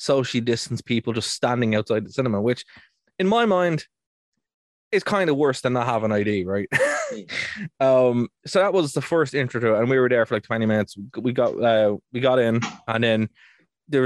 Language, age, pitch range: English, 20-39, 115-140 Hz